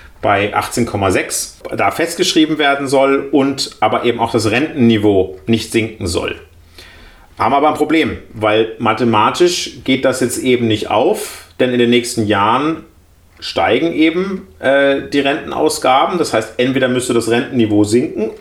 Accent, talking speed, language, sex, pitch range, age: German, 145 wpm, German, male, 115-155 Hz, 30-49